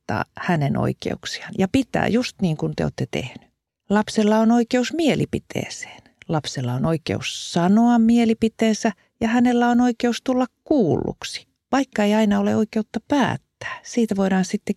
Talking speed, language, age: 140 wpm, Finnish, 50-69